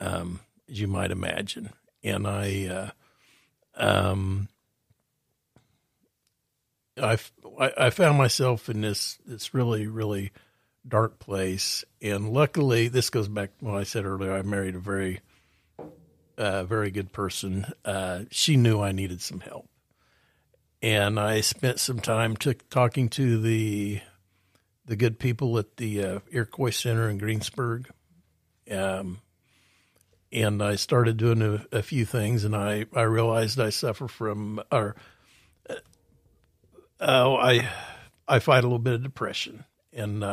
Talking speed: 140 wpm